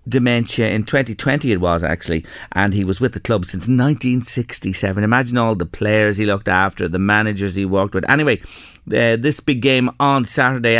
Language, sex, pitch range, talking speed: English, male, 100-130 Hz, 185 wpm